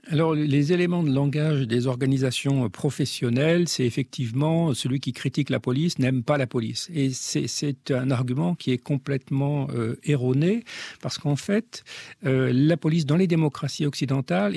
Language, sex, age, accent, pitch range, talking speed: French, male, 50-69, French, 130-170 Hz, 160 wpm